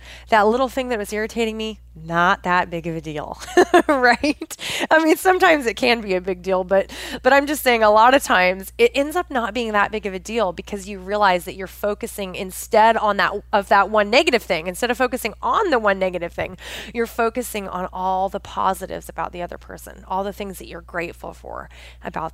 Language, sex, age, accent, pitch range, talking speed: English, female, 20-39, American, 185-245 Hz, 220 wpm